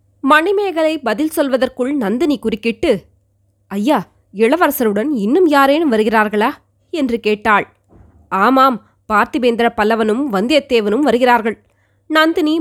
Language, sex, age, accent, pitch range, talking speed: Tamil, female, 20-39, native, 210-285 Hz, 85 wpm